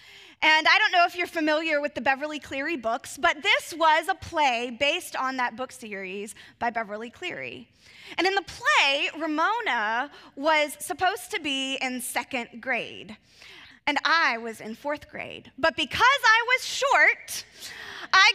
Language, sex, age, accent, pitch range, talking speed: English, female, 20-39, American, 265-380 Hz, 160 wpm